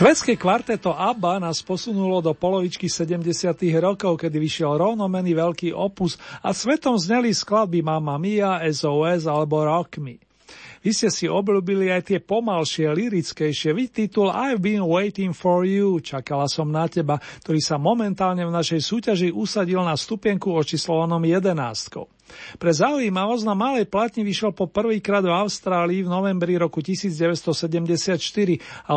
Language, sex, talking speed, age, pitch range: Slovak, male, 145 wpm, 40-59, 160-195 Hz